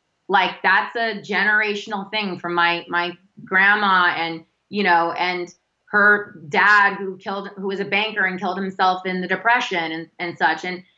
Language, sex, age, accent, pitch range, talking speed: English, female, 20-39, American, 175-215 Hz, 170 wpm